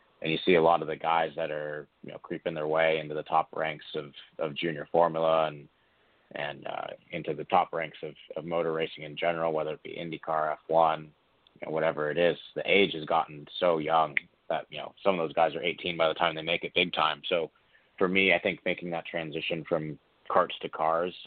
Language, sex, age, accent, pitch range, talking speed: English, male, 30-49, American, 80-85 Hz, 215 wpm